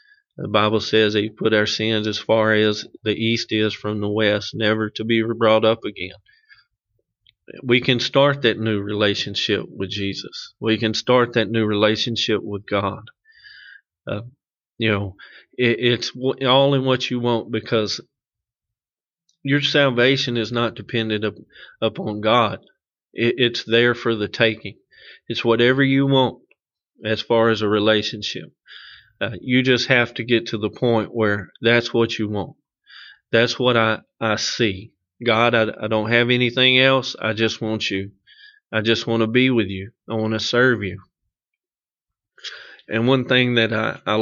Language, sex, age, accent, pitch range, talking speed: English, male, 40-59, American, 110-125 Hz, 165 wpm